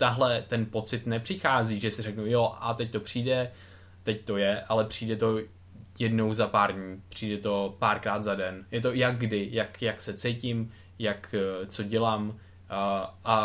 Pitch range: 100-110 Hz